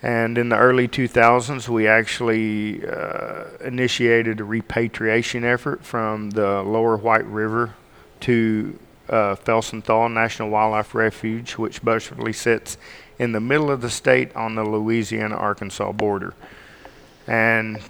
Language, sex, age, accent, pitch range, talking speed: English, male, 40-59, American, 110-115 Hz, 125 wpm